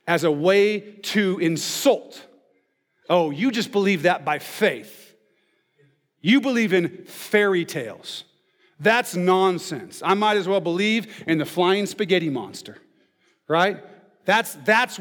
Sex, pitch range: male, 155-210 Hz